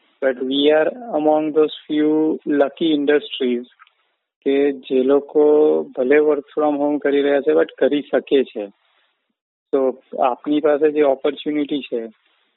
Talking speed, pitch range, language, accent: 100 wpm, 125-145 Hz, English, Indian